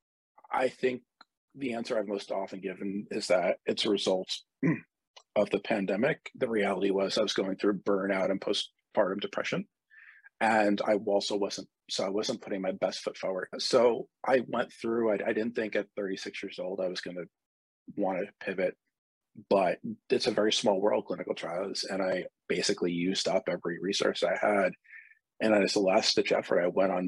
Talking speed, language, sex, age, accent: 185 wpm, English, male, 30-49, American